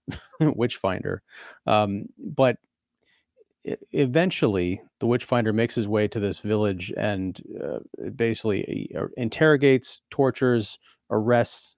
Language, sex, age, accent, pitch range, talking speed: English, male, 40-59, American, 100-125 Hz, 90 wpm